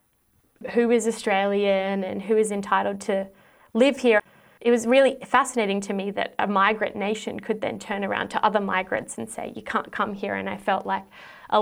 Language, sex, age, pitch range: English, female, 20-39, 195-225 Hz